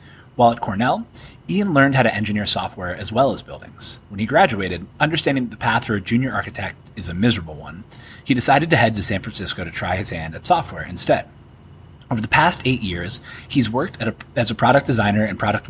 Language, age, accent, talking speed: English, 30-49, American, 210 wpm